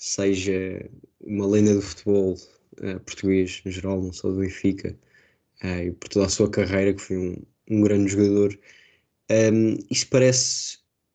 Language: Portuguese